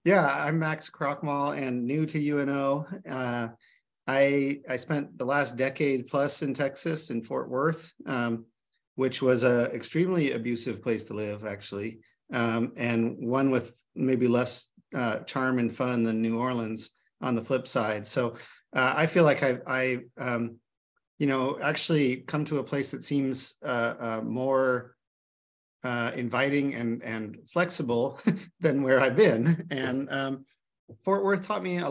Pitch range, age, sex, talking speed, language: 115-140 Hz, 40-59, male, 160 wpm, English